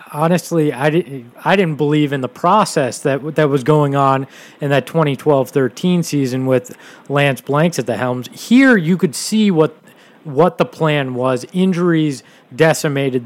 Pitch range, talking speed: 135-170 Hz, 160 wpm